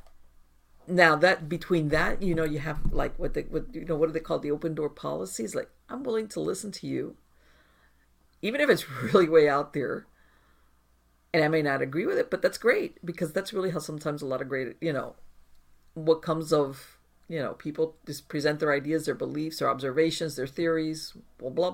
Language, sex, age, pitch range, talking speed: English, female, 50-69, 135-185 Hz, 205 wpm